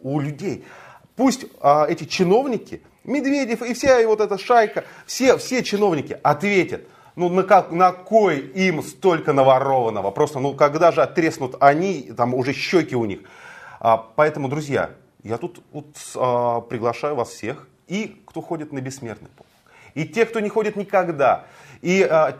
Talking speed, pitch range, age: 160 wpm, 140-210 Hz, 30-49